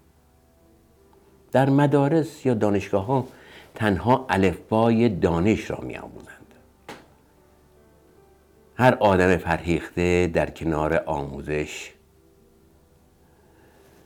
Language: Persian